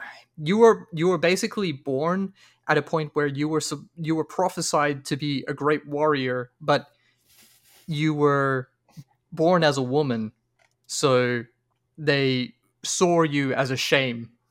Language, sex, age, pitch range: English, male, 20-39, 135-165 Hz